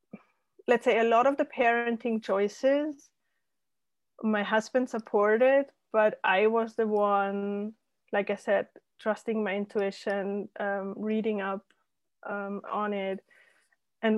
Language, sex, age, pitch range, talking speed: English, female, 20-39, 205-240 Hz, 125 wpm